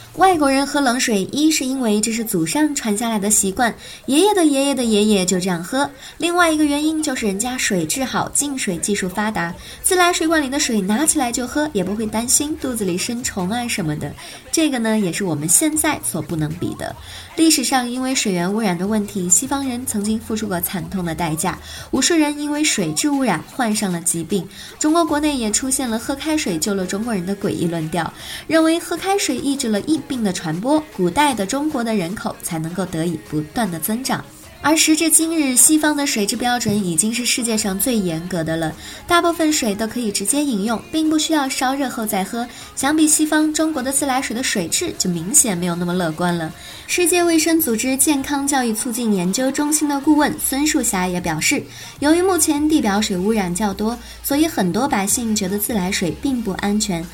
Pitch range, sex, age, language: 195-295 Hz, male, 20-39, Chinese